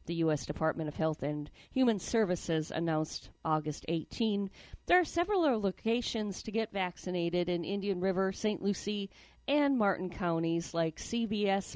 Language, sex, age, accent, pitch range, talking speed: English, female, 50-69, American, 175-225 Hz, 145 wpm